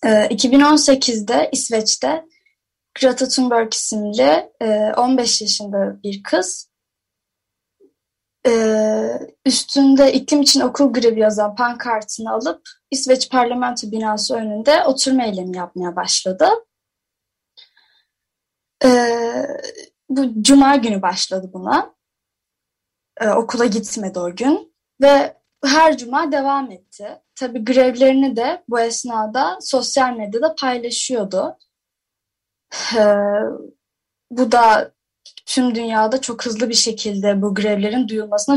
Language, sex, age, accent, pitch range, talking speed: Turkish, female, 10-29, native, 215-275 Hz, 90 wpm